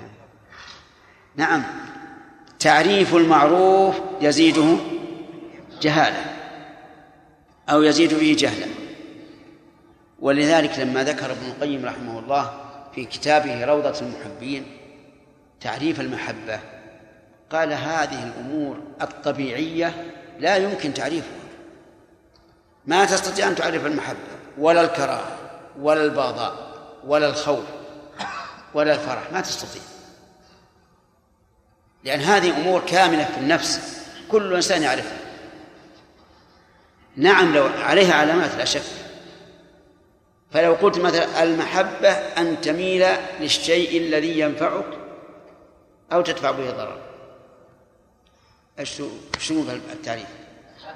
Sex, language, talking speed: male, Arabic, 90 wpm